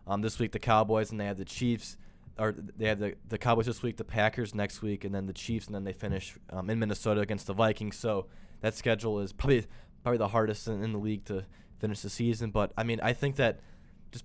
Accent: American